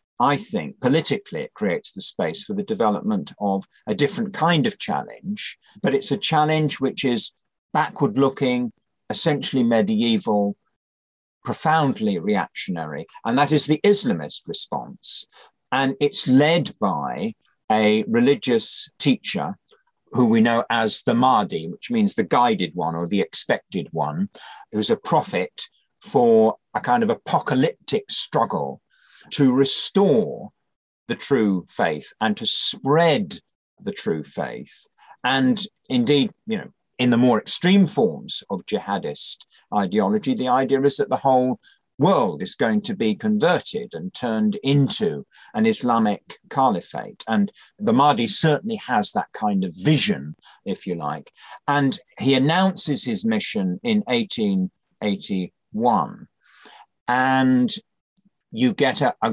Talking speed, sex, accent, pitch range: 130 wpm, male, British, 135-220 Hz